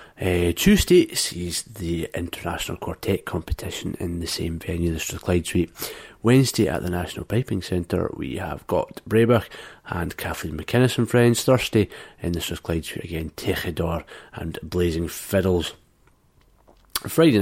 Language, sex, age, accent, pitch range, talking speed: English, male, 30-49, British, 85-100 Hz, 140 wpm